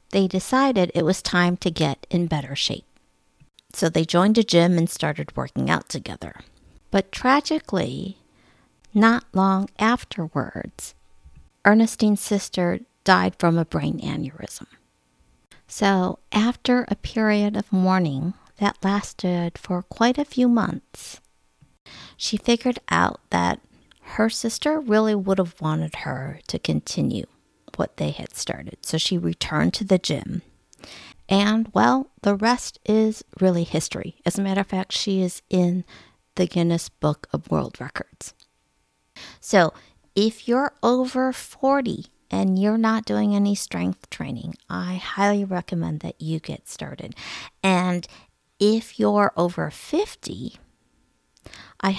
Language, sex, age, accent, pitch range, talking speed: English, female, 50-69, American, 170-215 Hz, 130 wpm